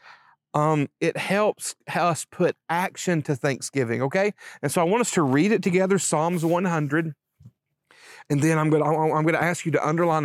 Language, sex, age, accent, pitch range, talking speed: English, male, 40-59, American, 145-195 Hz, 180 wpm